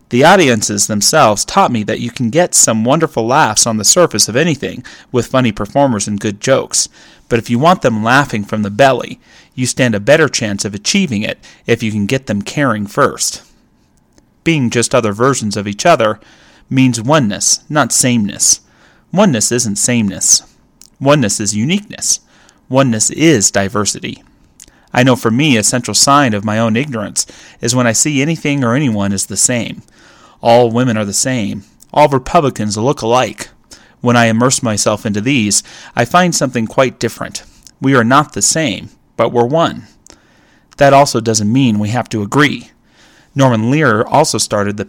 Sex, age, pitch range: male, 30-49, 105-135 Hz